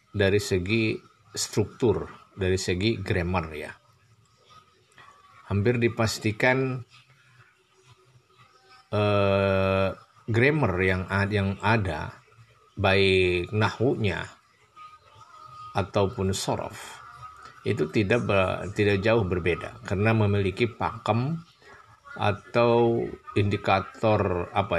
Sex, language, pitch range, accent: male, Indonesian, 95-115 Hz, native